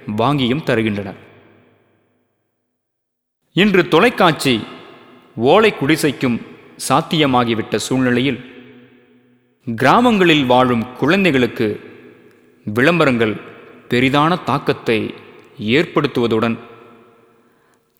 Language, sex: Tamil, male